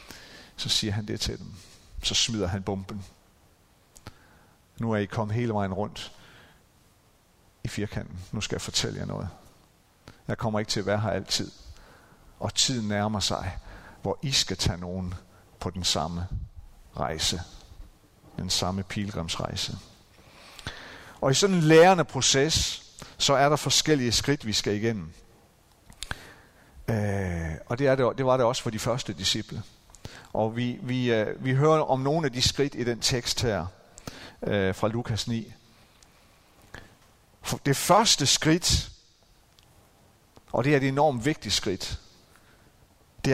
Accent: native